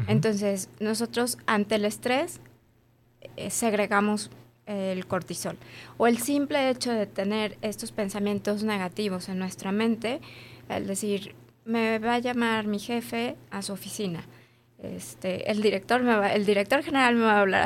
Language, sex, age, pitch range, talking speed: Spanish, female, 20-39, 185-225 Hz, 145 wpm